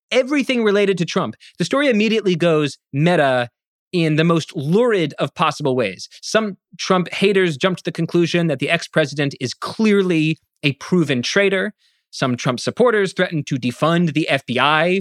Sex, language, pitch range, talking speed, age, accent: male, English, 145-190 Hz, 155 wpm, 30-49, American